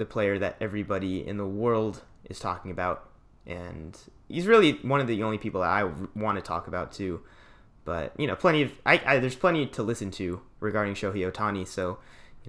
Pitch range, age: 95-115 Hz, 20-39